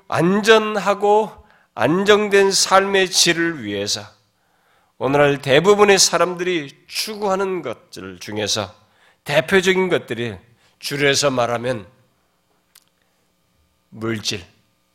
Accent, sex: native, male